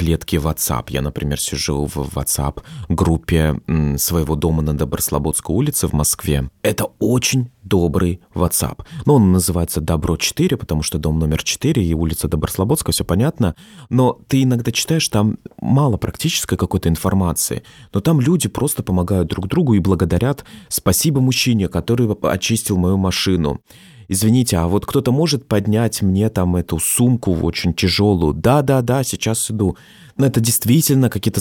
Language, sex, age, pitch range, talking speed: Russian, male, 30-49, 85-120 Hz, 145 wpm